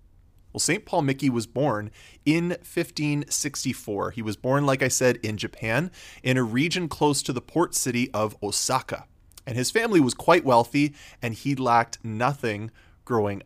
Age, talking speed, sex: 20-39, 165 wpm, male